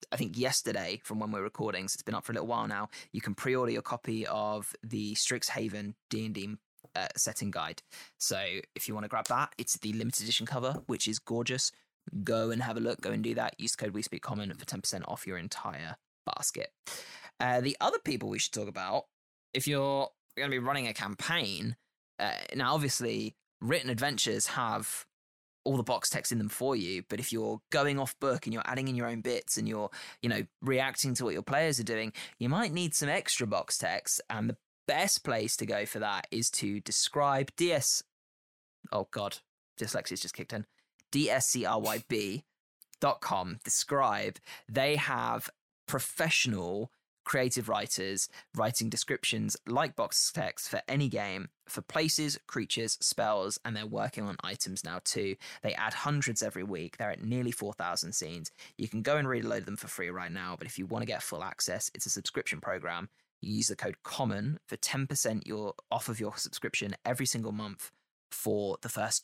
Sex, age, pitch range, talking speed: male, 20-39, 105-130 Hz, 190 wpm